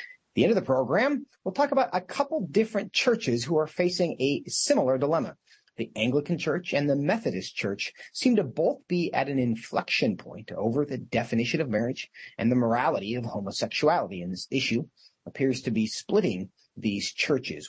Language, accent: English, American